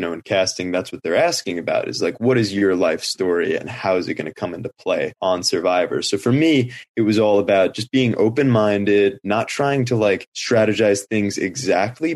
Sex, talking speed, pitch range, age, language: male, 215 wpm, 100-115 Hz, 20-39, English